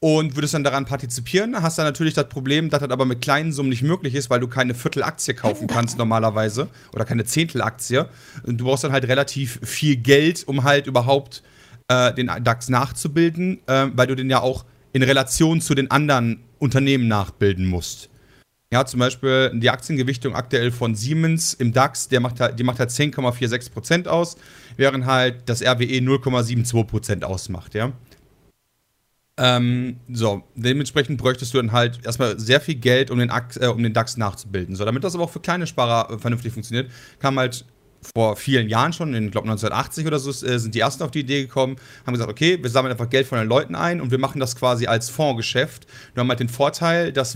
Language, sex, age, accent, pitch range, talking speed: German, male, 40-59, German, 120-140 Hz, 190 wpm